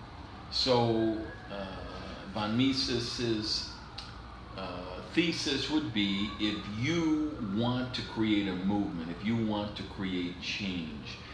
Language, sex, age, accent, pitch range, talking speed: English, male, 50-69, American, 95-110 Hz, 110 wpm